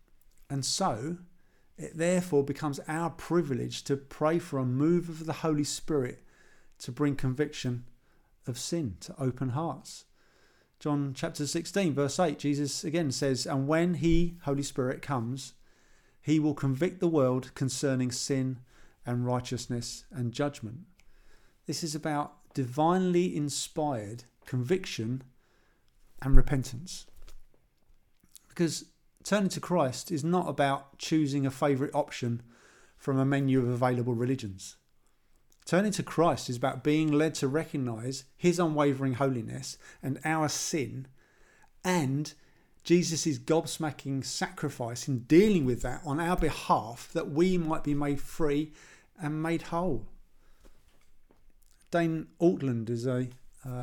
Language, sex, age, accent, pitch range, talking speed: English, male, 50-69, British, 130-160 Hz, 125 wpm